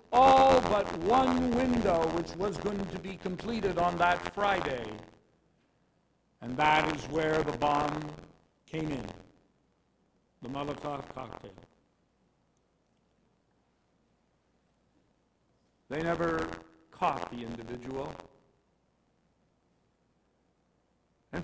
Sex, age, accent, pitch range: male, 60-79, American, 160-205 Hz